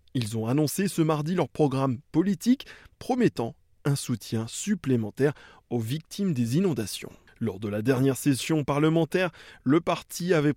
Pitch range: 120-160 Hz